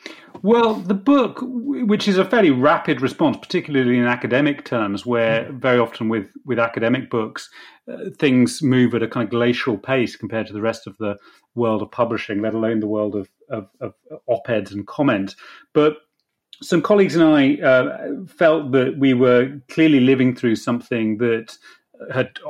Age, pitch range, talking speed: 30-49, 115-160 Hz, 170 wpm